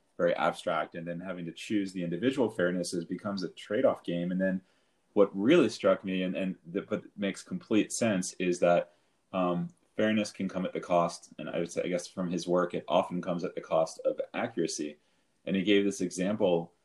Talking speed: 205 wpm